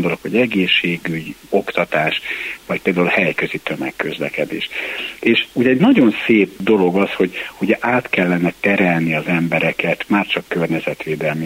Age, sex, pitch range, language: 60-79, male, 90-105 Hz, Hungarian